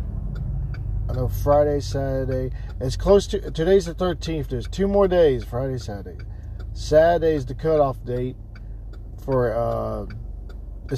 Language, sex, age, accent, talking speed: English, male, 50-69, American, 120 wpm